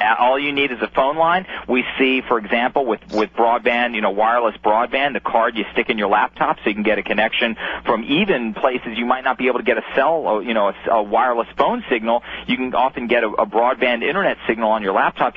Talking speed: 240 wpm